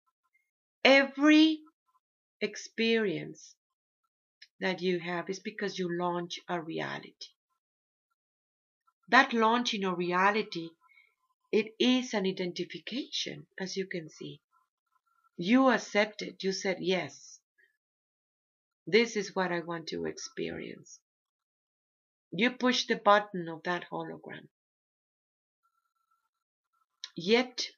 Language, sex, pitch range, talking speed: English, female, 180-260 Hz, 95 wpm